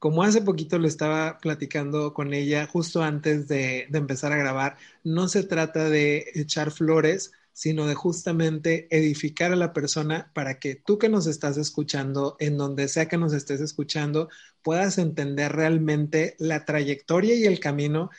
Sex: male